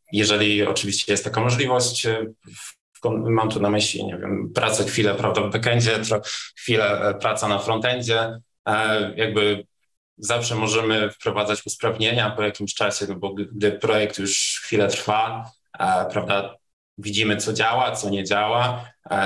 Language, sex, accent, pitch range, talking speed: Polish, male, native, 105-115 Hz, 150 wpm